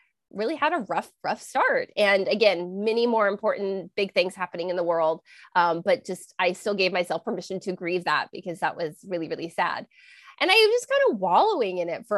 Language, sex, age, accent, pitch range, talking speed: English, female, 20-39, American, 185-270 Hz, 215 wpm